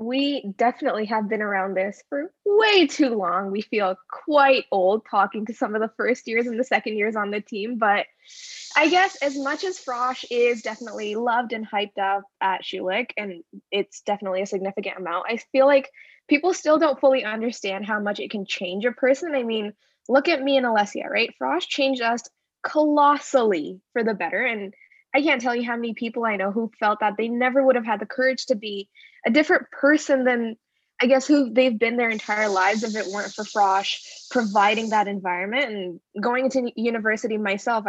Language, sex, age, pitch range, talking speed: English, female, 10-29, 205-265 Hz, 200 wpm